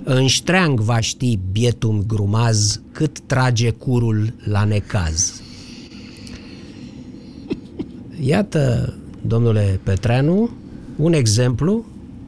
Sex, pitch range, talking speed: male, 110-185 Hz, 80 wpm